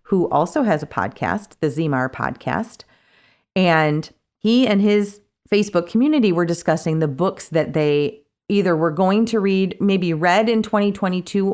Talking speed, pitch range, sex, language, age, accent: 150 wpm, 150-220 Hz, female, English, 40-59, American